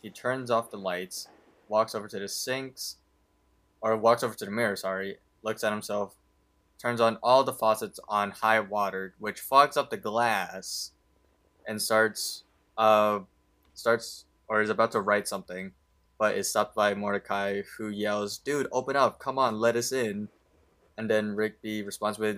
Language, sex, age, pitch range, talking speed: English, male, 20-39, 100-115 Hz, 170 wpm